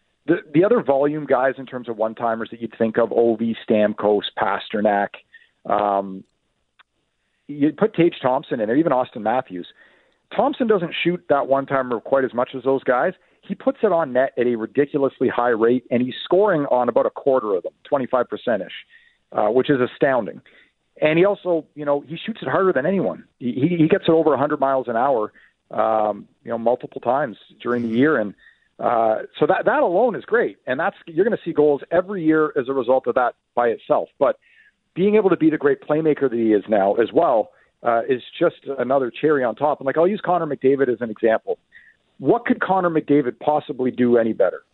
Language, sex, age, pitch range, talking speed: English, male, 40-59, 120-170 Hz, 205 wpm